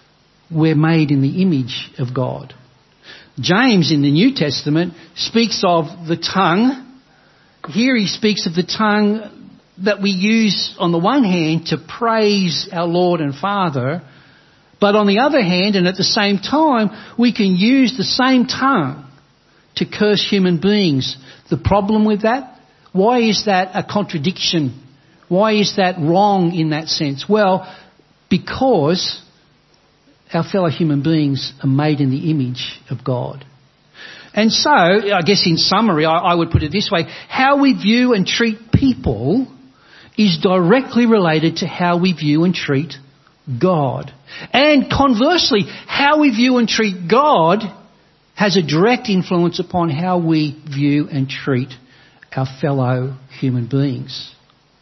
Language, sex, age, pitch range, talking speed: English, male, 60-79, 155-215 Hz, 150 wpm